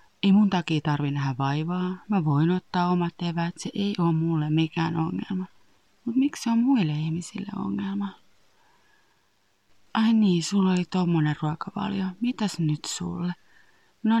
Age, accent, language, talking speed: 30-49, native, Finnish, 145 wpm